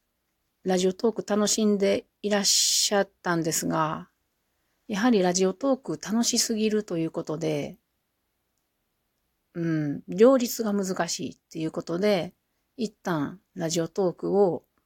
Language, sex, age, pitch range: Japanese, female, 40-59, 165-210 Hz